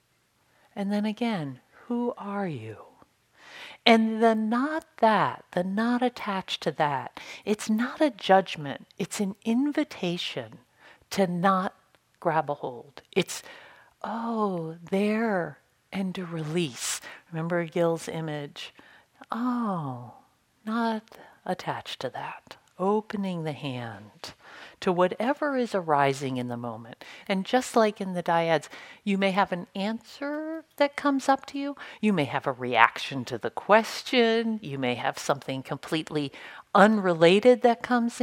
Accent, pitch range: American, 150-230 Hz